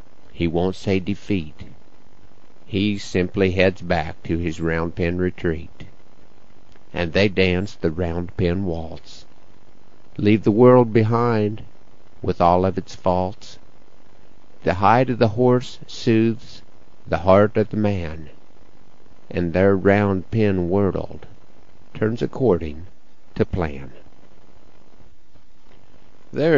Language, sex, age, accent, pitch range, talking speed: English, male, 50-69, American, 90-110 Hz, 105 wpm